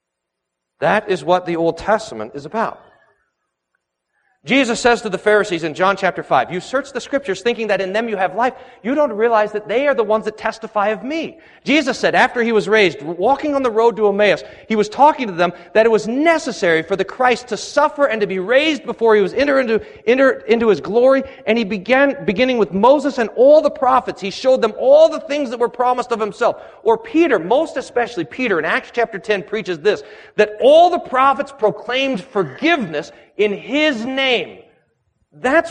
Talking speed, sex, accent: 200 wpm, male, American